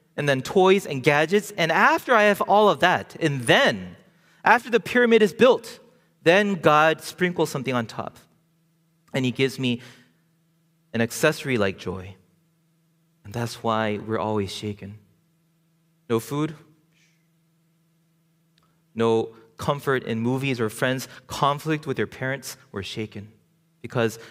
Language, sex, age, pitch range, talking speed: English, male, 30-49, 110-165 Hz, 135 wpm